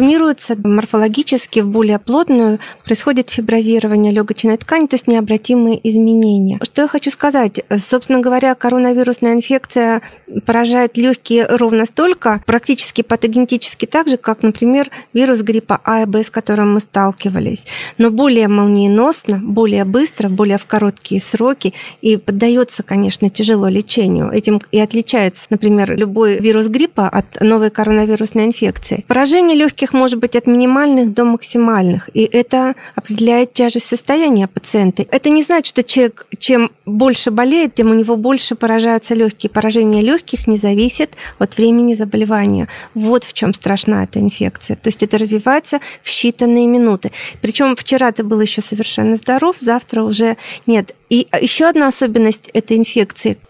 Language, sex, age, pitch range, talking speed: Russian, female, 30-49, 215-245 Hz, 145 wpm